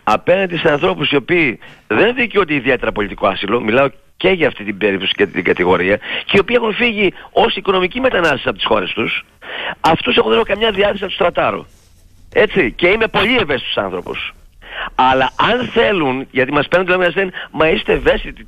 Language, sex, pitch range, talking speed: Greek, male, 120-185 Hz, 190 wpm